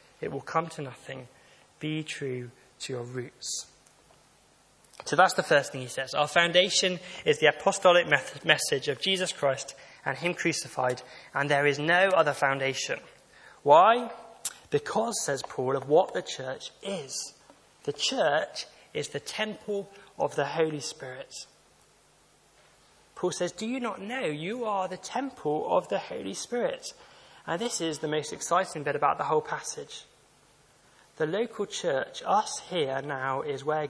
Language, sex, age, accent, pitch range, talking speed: English, male, 20-39, British, 145-190 Hz, 150 wpm